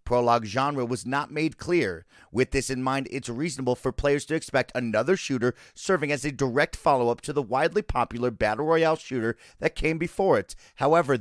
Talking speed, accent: 185 wpm, American